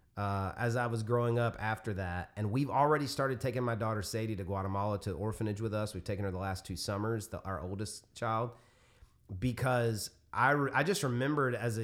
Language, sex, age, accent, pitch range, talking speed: English, male, 30-49, American, 105-130 Hz, 195 wpm